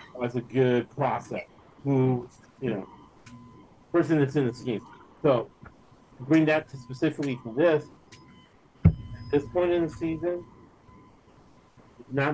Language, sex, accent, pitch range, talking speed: English, male, American, 120-145 Hz, 130 wpm